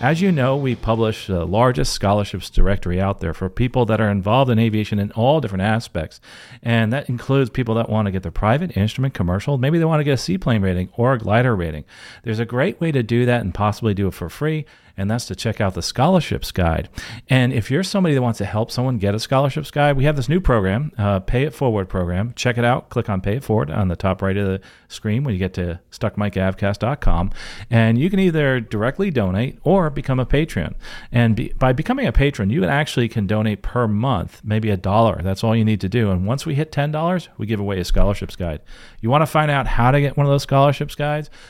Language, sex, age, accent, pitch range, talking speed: English, male, 40-59, American, 100-130 Hz, 235 wpm